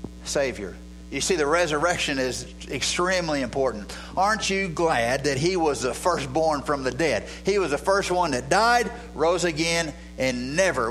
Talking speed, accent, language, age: 165 wpm, American, English, 50-69